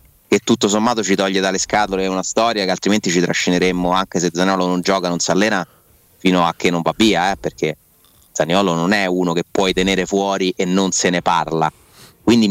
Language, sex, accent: Italian, male, native